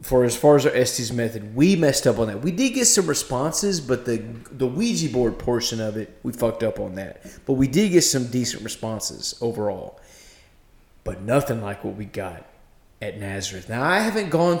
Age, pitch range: 30-49, 125-190 Hz